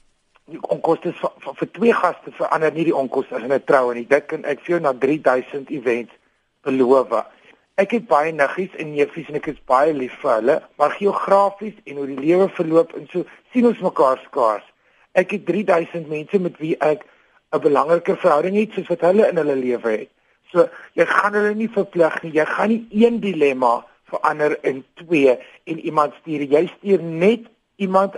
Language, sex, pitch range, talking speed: Dutch, male, 140-185 Hz, 205 wpm